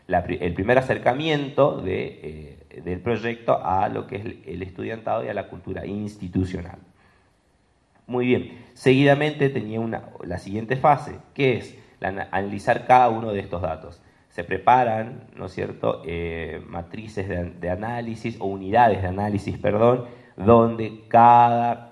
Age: 30-49